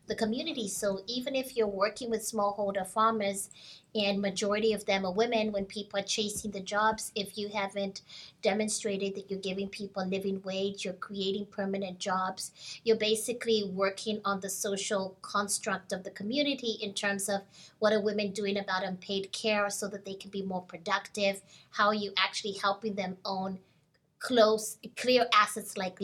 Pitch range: 190-215 Hz